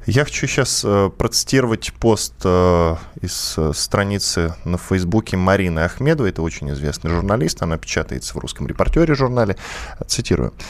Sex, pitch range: male, 85-120 Hz